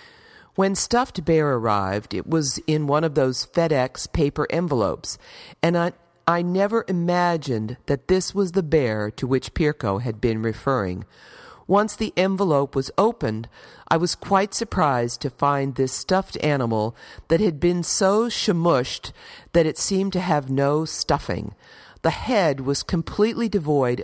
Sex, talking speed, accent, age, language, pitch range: female, 150 wpm, American, 50-69, English, 125-180 Hz